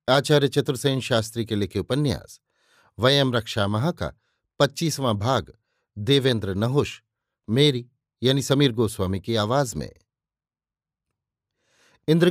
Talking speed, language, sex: 100 wpm, Hindi, male